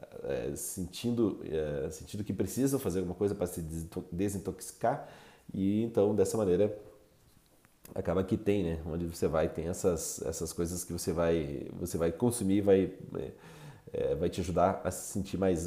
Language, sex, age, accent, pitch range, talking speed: Portuguese, male, 40-59, Brazilian, 85-110 Hz, 160 wpm